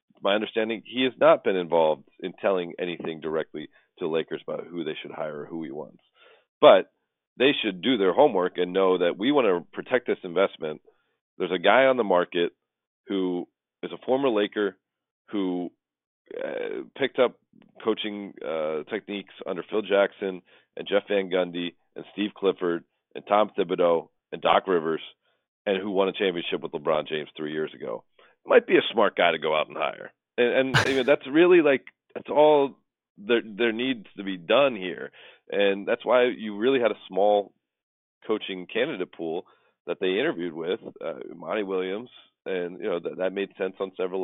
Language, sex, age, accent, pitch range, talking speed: English, male, 40-59, American, 90-110 Hz, 185 wpm